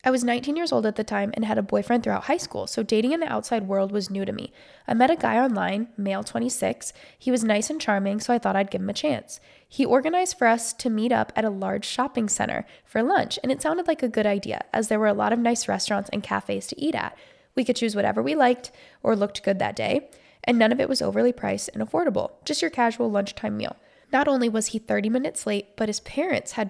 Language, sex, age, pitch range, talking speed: English, female, 10-29, 200-265 Hz, 260 wpm